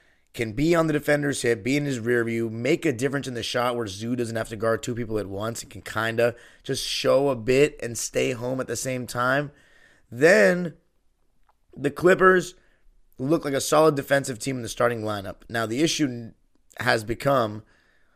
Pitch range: 115-145 Hz